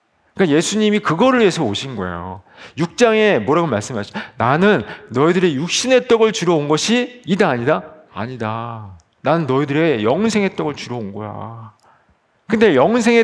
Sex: male